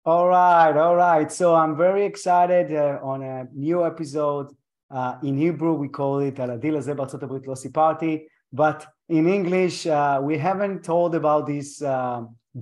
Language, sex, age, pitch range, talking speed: Hebrew, male, 30-49, 135-165 Hz, 145 wpm